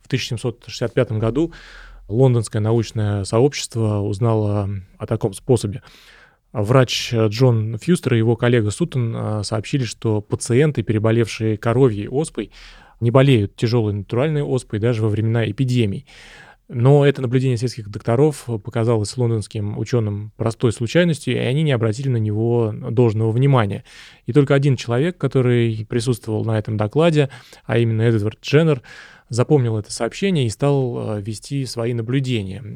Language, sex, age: Russian, male, 20-39